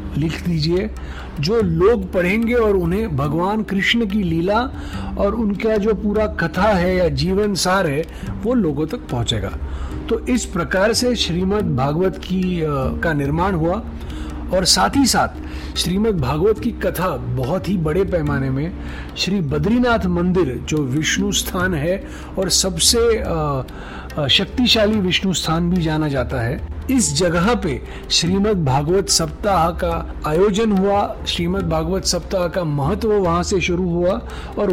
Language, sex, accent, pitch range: Hindi, male, native, 150-205 Hz